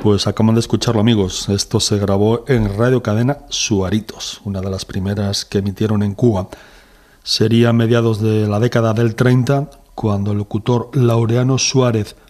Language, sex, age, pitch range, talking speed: Spanish, male, 40-59, 105-125 Hz, 160 wpm